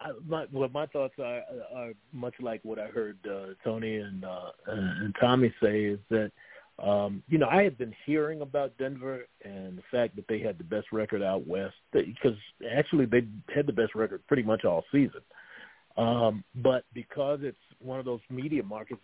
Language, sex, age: English, male, 50-69